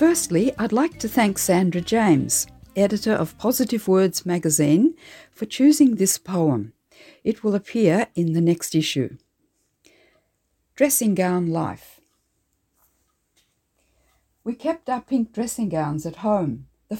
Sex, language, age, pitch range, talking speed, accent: female, English, 60-79, 160-215 Hz, 125 wpm, Australian